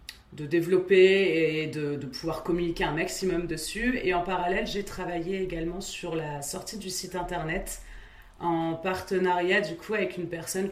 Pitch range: 155-185 Hz